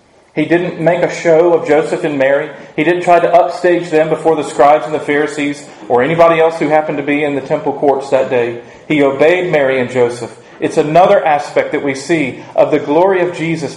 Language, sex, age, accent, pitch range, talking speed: English, male, 40-59, American, 145-175 Hz, 220 wpm